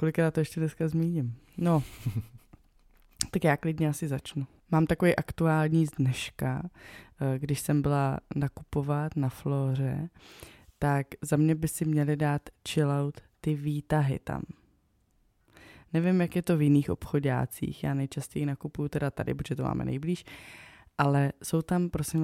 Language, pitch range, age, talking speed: Czech, 135-160 Hz, 20-39, 145 wpm